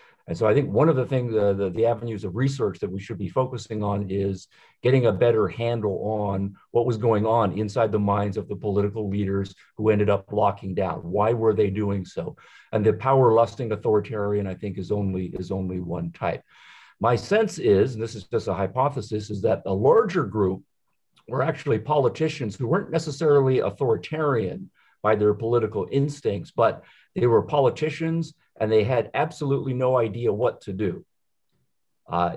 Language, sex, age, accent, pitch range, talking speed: English, male, 50-69, American, 105-135 Hz, 180 wpm